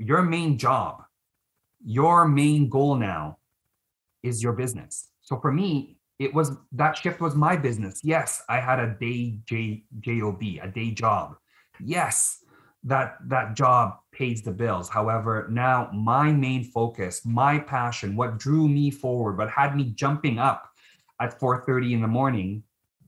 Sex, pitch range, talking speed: male, 115-140 Hz, 150 wpm